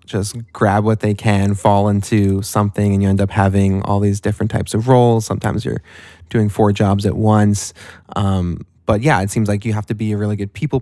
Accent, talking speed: American, 220 wpm